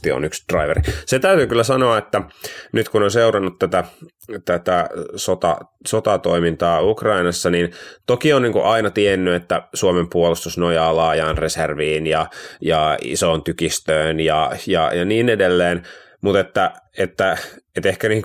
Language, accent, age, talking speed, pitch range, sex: Finnish, native, 30-49, 150 wpm, 85-100 Hz, male